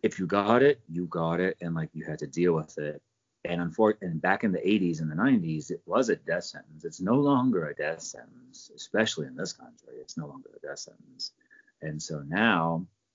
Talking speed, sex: 220 wpm, male